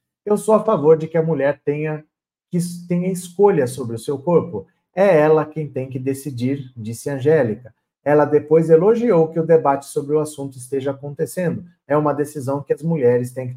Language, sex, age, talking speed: Portuguese, male, 50-69, 185 wpm